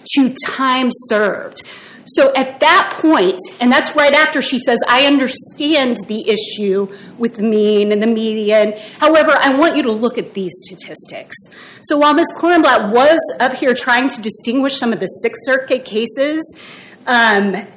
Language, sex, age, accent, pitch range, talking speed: English, female, 30-49, American, 215-275 Hz, 165 wpm